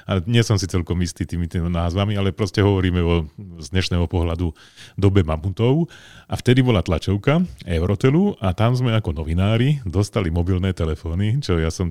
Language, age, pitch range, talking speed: Slovak, 40-59, 85-100 Hz, 165 wpm